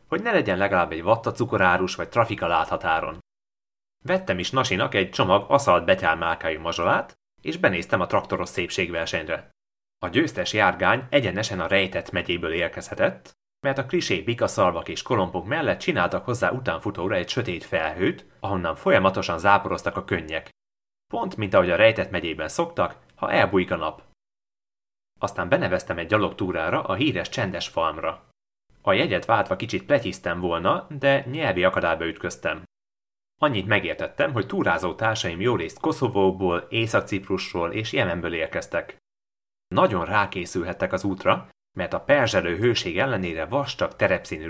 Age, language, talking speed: 30-49, Hungarian, 140 wpm